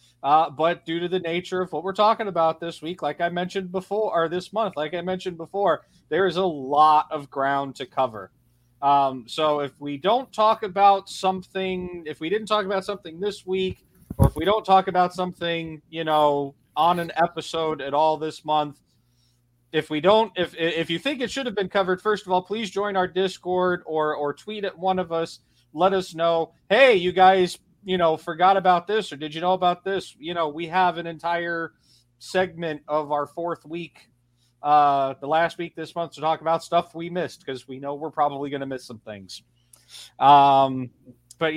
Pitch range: 145-180 Hz